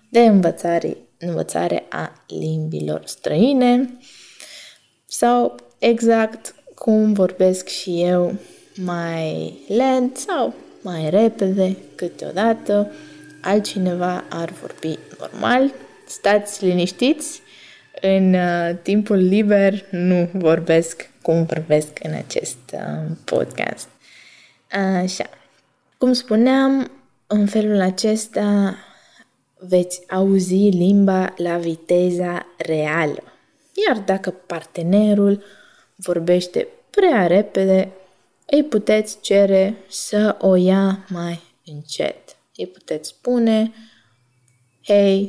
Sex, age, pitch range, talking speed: female, 20-39, 170-215 Hz, 85 wpm